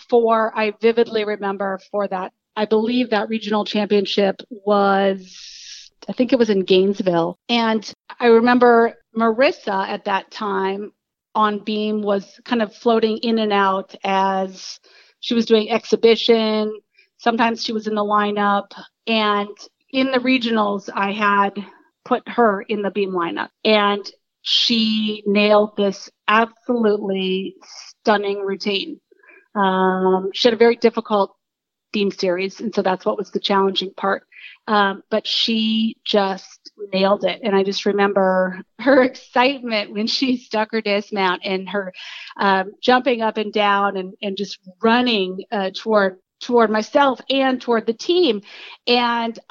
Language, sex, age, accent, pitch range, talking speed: English, female, 40-59, American, 200-235 Hz, 140 wpm